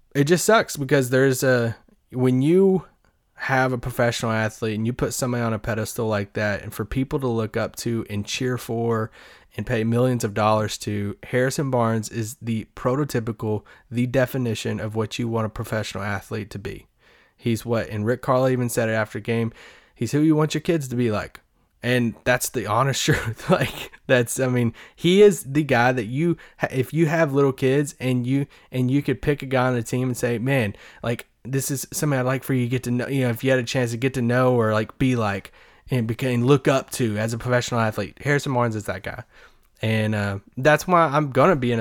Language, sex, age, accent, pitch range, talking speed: English, male, 20-39, American, 110-135 Hz, 225 wpm